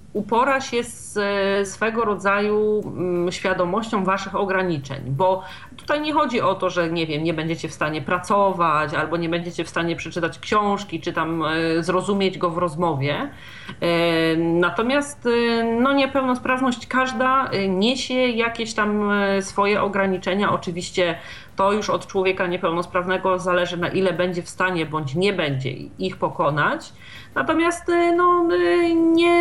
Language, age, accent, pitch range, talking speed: Polish, 40-59, native, 175-250 Hz, 125 wpm